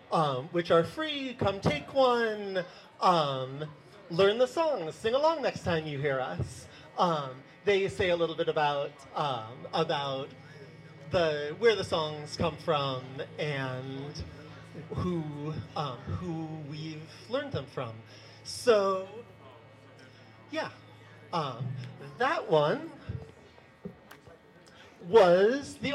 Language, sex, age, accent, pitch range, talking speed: English, male, 30-49, American, 145-225 Hz, 110 wpm